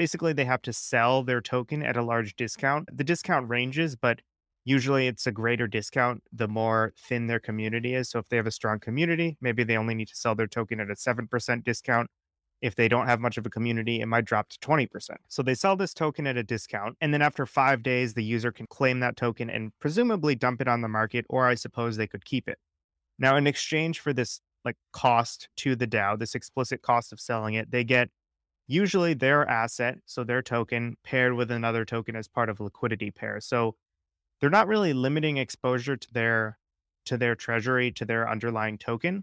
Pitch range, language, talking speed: 110-135 Hz, English, 215 wpm